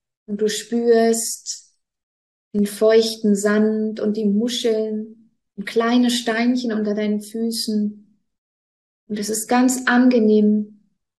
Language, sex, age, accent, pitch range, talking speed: German, female, 20-39, German, 205-230 Hz, 105 wpm